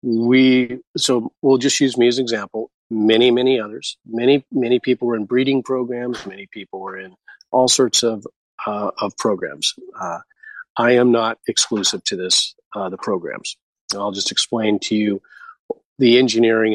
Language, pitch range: English, 110-130 Hz